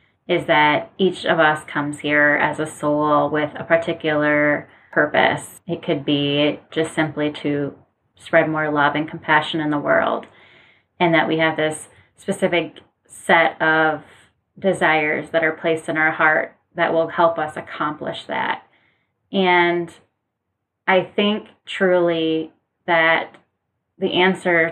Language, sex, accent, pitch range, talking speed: English, female, American, 155-175 Hz, 135 wpm